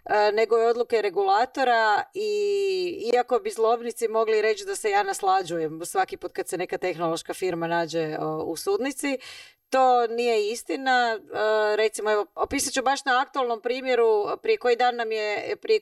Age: 30-49